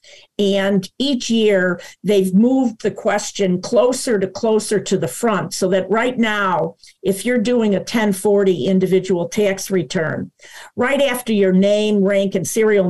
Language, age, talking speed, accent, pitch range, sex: English, 50-69, 150 wpm, American, 185-215 Hz, female